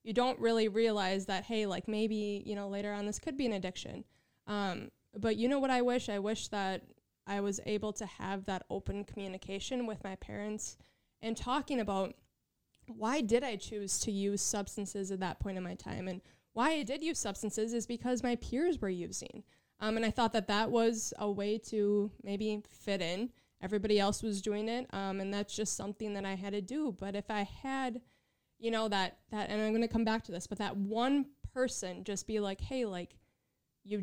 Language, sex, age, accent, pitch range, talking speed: English, female, 20-39, American, 200-230 Hz, 210 wpm